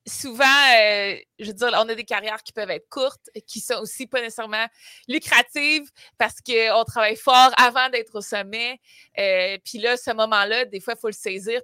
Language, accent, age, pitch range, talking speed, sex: French, Canadian, 20-39, 190-245 Hz, 195 wpm, female